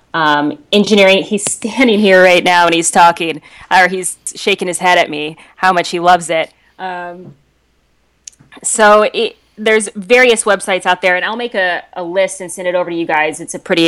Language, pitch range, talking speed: English, 160-190 Hz, 200 wpm